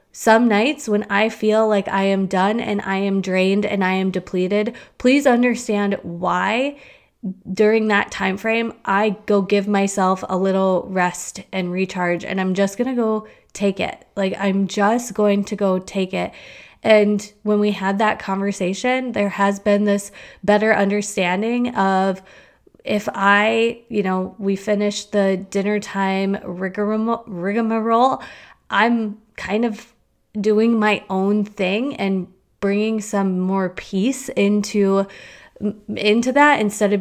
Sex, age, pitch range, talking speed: female, 20-39, 190-215 Hz, 145 wpm